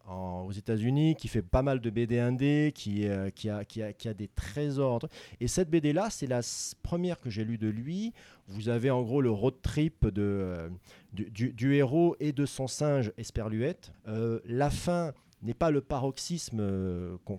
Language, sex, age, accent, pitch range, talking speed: French, male, 40-59, French, 100-140 Hz, 190 wpm